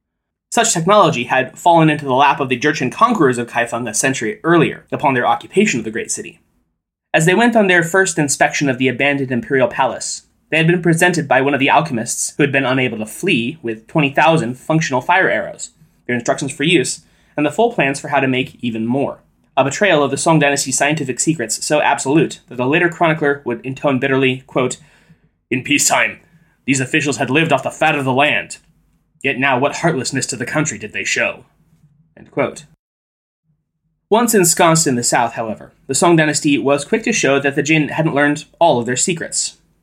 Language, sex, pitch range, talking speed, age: English, male, 130-160 Hz, 200 wpm, 20-39